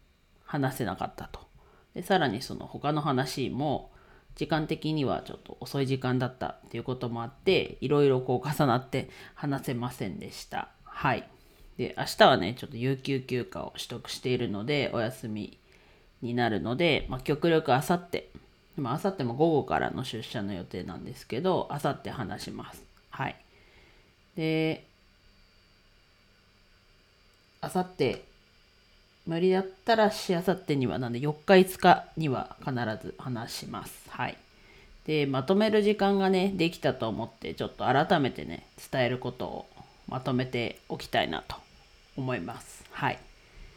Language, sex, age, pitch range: Japanese, female, 40-59, 120-155 Hz